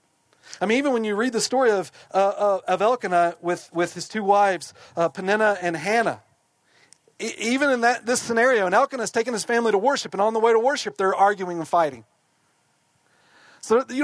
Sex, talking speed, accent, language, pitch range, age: male, 200 wpm, American, English, 165-230 Hz, 40-59